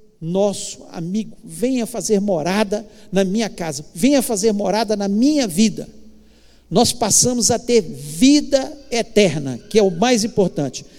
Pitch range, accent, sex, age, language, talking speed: 210-270 Hz, Brazilian, male, 50-69, Portuguese, 135 wpm